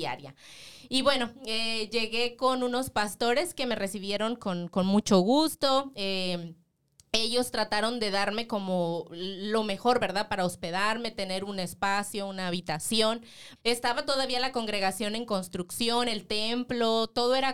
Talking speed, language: 140 wpm, English